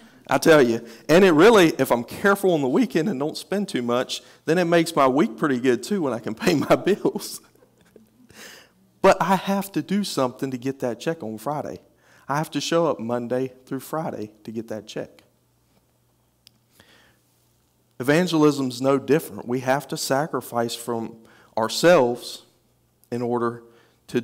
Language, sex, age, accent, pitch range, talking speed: English, male, 40-59, American, 115-155 Hz, 165 wpm